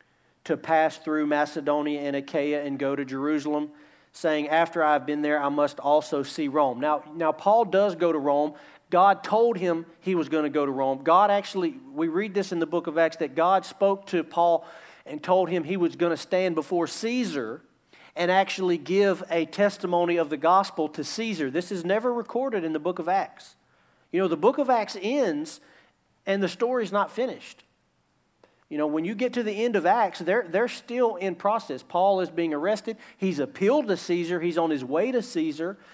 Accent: American